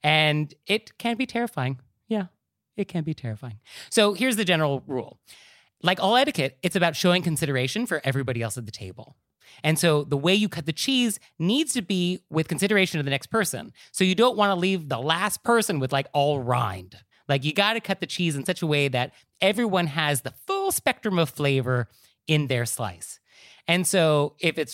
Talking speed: 205 wpm